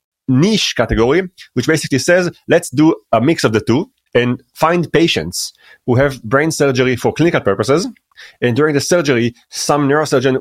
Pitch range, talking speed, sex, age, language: 120-165 Hz, 160 wpm, male, 30-49, English